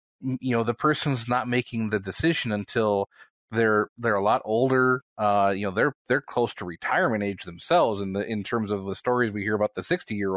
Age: 30-49